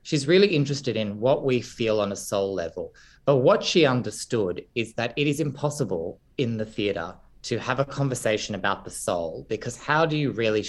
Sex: male